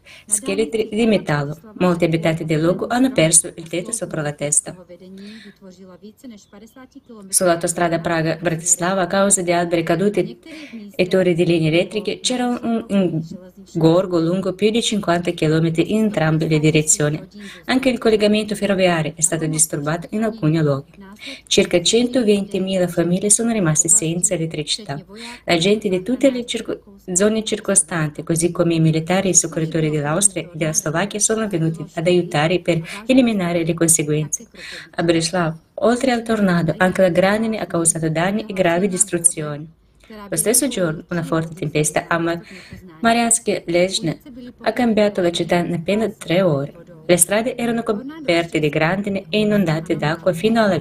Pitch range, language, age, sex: 165-210 Hz, Italian, 20-39, female